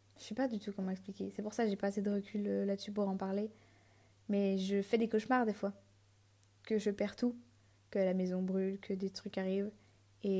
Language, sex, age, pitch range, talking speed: French, female, 20-39, 180-215 Hz, 235 wpm